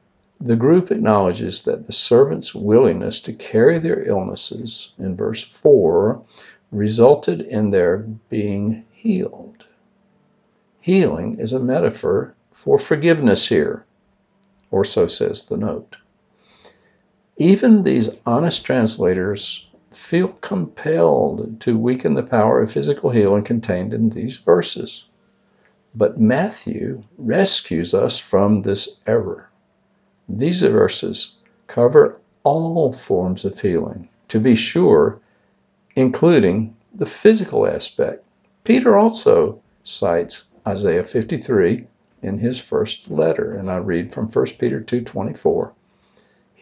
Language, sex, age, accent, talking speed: English, male, 60-79, American, 110 wpm